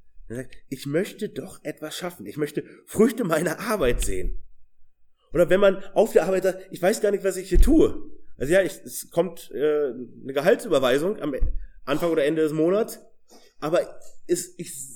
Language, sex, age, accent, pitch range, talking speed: German, male, 30-49, German, 150-245 Hz, 160 wpm